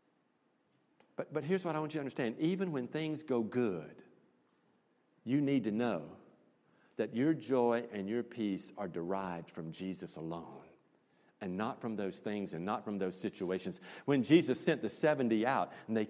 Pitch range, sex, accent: 105-160 Hz, male, American